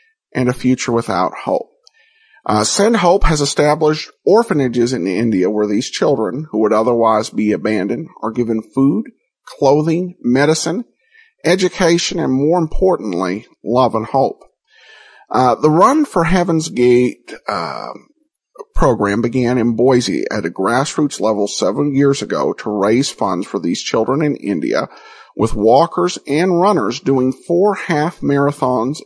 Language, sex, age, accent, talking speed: English, male, 50-69, American, 135 wpm